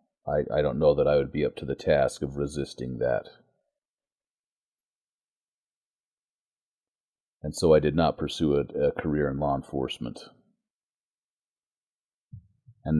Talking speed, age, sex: 125 wpm, 40-59, male